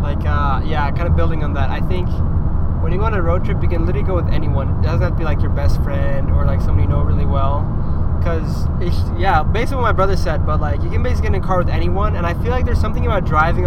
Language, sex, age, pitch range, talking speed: English, male, 20-39, 80-90 Hz, 285 wpm